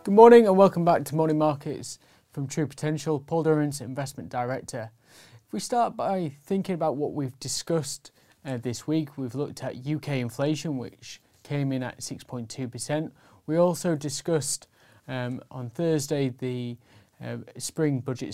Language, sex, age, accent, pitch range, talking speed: English, male, 20-39, British, 125-155 Hz, 155 wpm